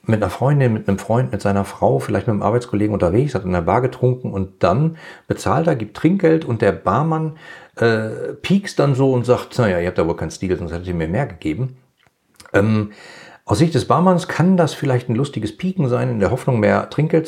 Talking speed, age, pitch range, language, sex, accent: 220 wpm, 40-59, 100-130 Hz, German, male, German